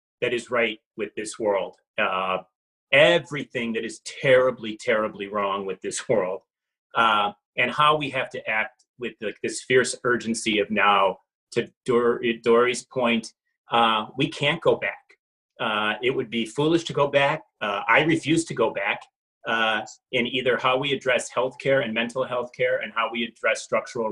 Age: 30-49